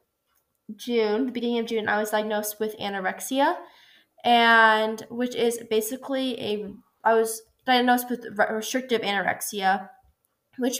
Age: 10-29